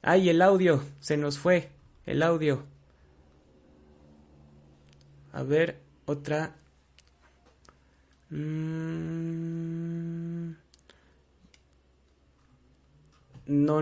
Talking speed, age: 50 wpm, 30-49